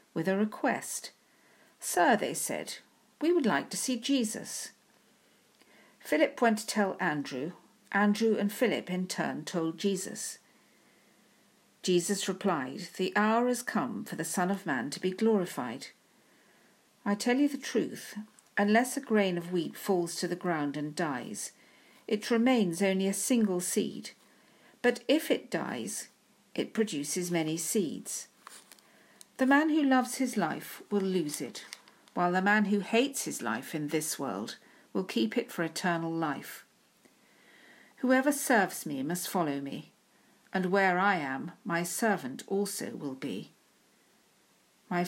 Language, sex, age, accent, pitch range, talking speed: English, female, 50-69, British, 175-230 Hz, 145 wpm